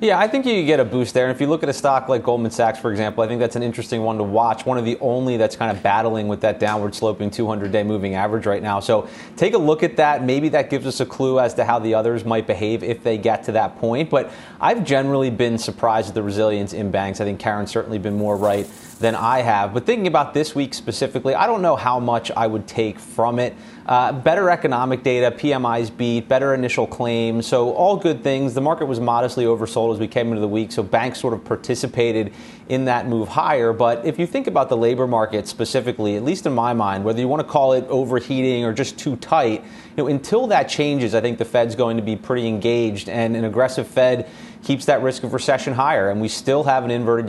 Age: 30-49